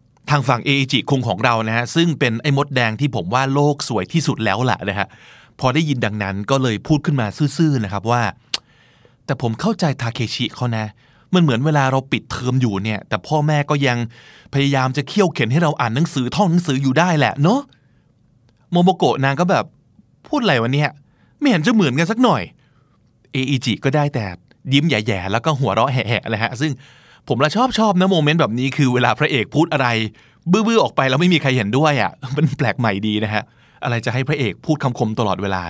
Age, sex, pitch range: 20-39, male, 120-150 Hz